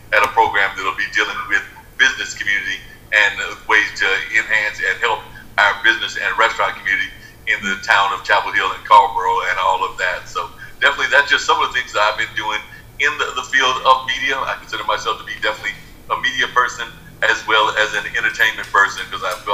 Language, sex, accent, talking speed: English, male, American, 205 wpm